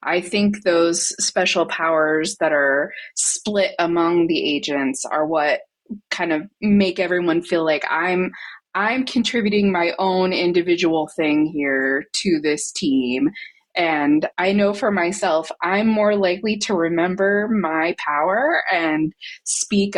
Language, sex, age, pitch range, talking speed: English, female, 20-39, 160-205 Hz, 130 wpm